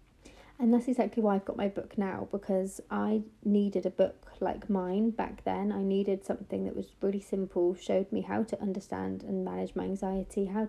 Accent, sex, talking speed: British, female, 195 wpm